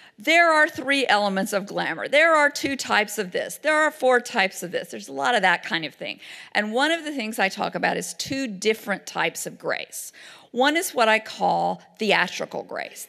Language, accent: English, American